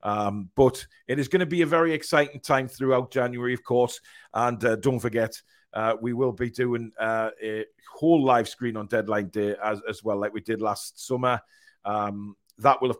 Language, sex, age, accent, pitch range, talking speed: English, male, 40-59, British, 110-130 Hz, 205 wpm